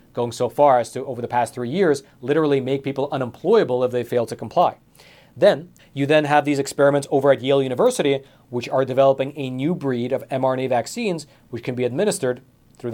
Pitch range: 125-145 Hz